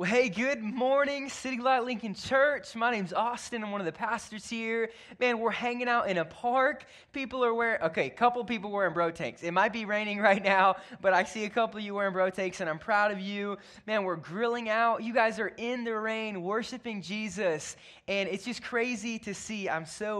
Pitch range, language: 180-225 Hz, English